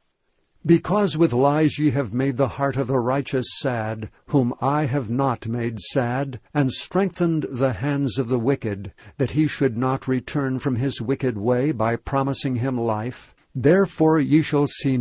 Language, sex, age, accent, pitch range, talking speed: English, male, 60-79, American, 125-150 Hz, 170 wpm